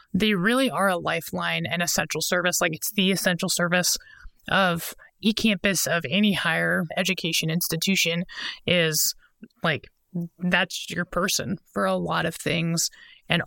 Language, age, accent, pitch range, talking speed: English, 20-39, American, 165-190 Hz, 145 wpm